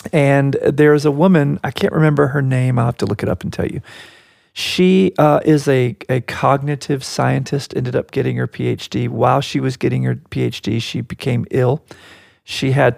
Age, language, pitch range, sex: 40-59, English, 115-140 Hz, male